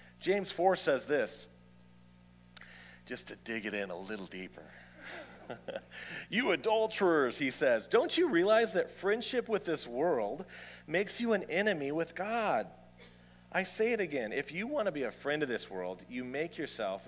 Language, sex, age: English, male, 40-59